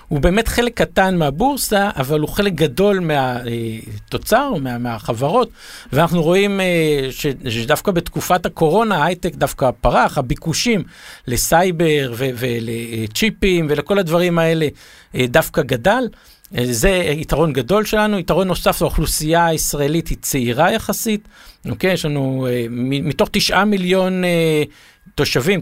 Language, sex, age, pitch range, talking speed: Hebrew, male, 50-69, 145-195 Hz, 105 wpm